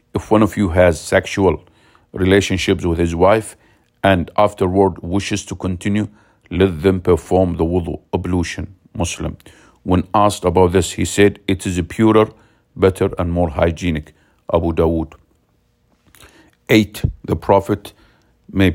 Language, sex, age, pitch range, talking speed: English, male, 50-69, 90-100 Hz, 135 wpm